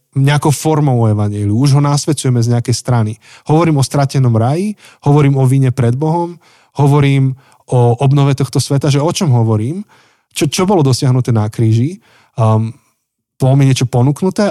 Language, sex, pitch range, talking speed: Slovak, male, 115-140 Hz, 160 wpm